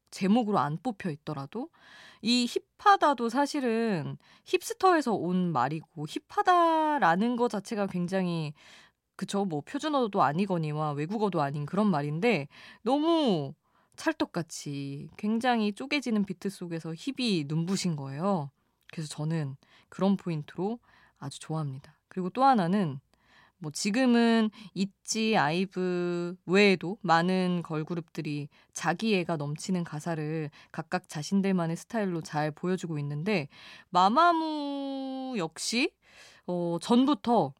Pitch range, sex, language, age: 160-230 Hz, female, Korean, 20-39